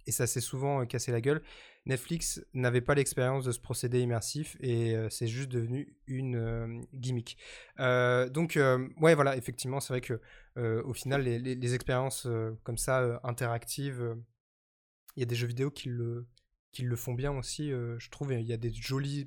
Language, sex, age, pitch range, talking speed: French, male, 20-39, 120-145 Hz, 195 wpm